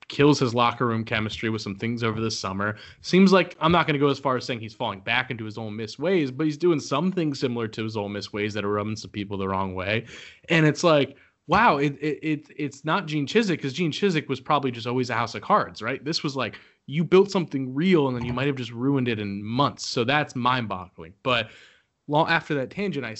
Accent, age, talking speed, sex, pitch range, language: American, 20-39, 255 wpm, male, 110-145 Hz, English